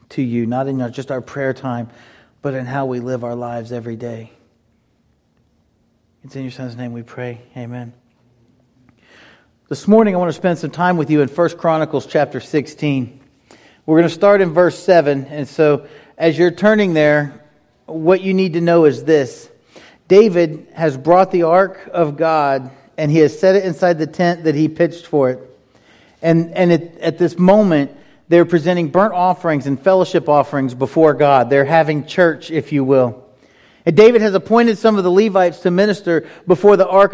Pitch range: 135-180 Hz